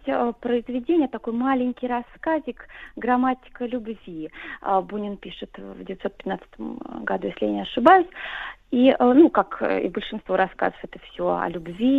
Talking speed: 125 wpm